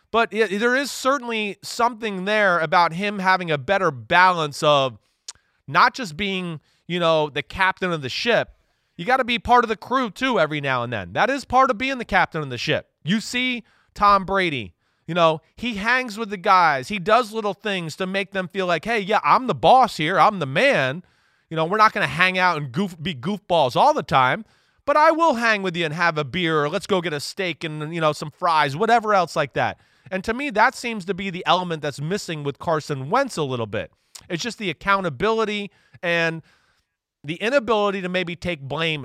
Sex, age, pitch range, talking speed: male, 30-49, 165-225 Hz, 220 wpm